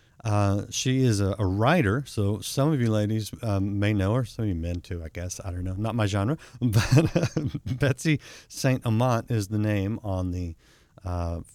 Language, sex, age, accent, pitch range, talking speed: English, male, 50-69, American, 95-125 Hz, 205 wpm